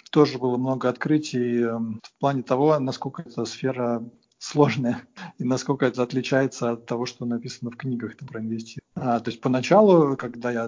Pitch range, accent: 125-155 Hz, native